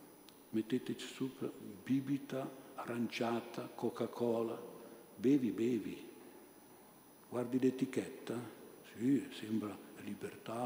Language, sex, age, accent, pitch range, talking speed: Italian, male, 60-79, native, 105-125 Hz, 70 wpm